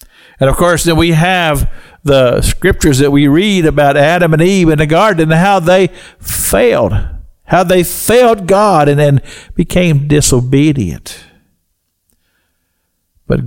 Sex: male